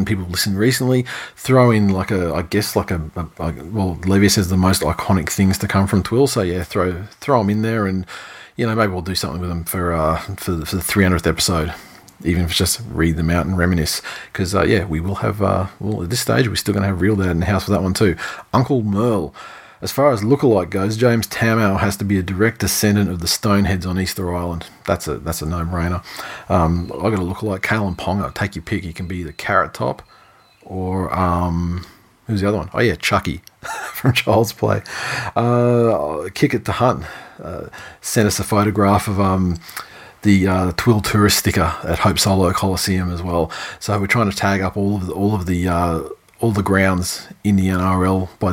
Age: 40-59